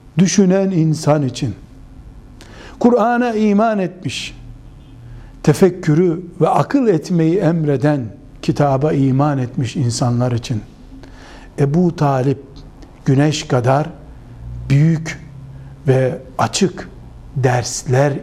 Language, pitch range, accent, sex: Turkish, 135-200 Hz, native, male